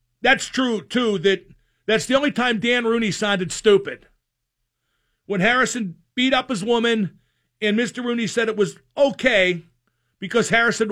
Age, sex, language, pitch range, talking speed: 50-69, male, English, 175-240 Hz, 150 wpm